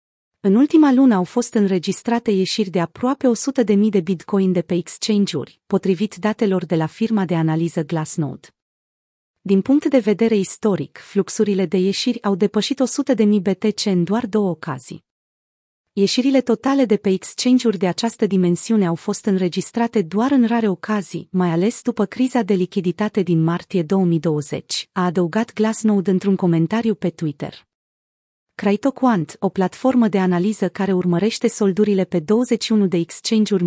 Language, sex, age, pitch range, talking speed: Romanian, female, 30-49, 180-225 Hz, 155 wpm